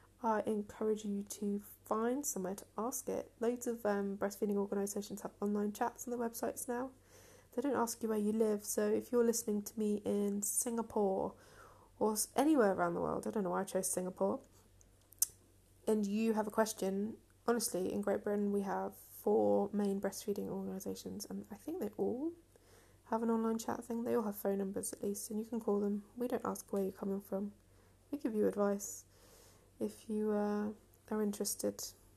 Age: 20-39